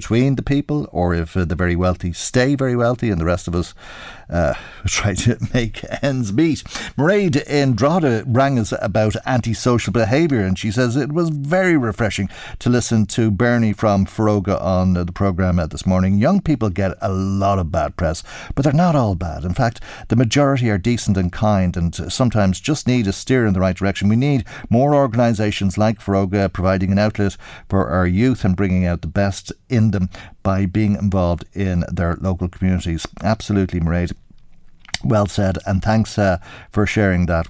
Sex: male